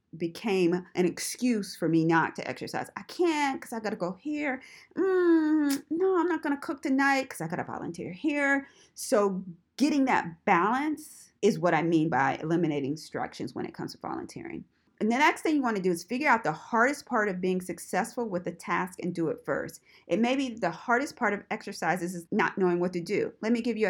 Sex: female